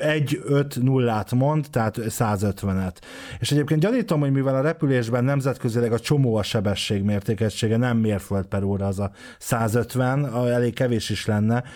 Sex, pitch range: male, 105-140 Hz